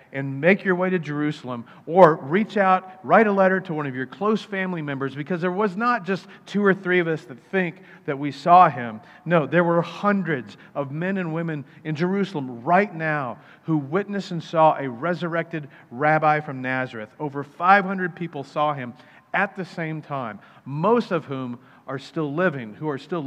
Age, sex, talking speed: 40-59, male, 190 wpm